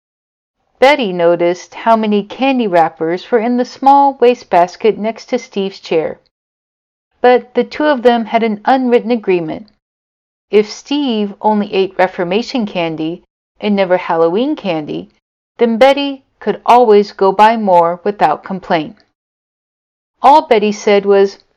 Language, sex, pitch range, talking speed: English, female, 195-255 Hz, 135 wpm